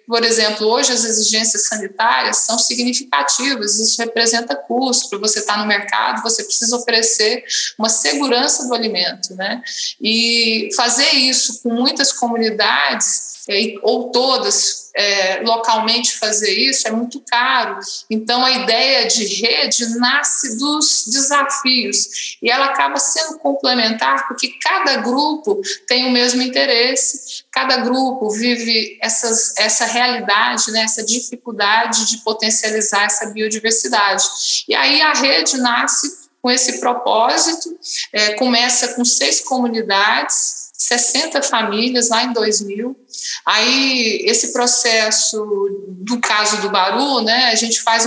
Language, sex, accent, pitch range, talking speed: Portuguese, female, Brazilian, 220-260 Hz, 120 wpm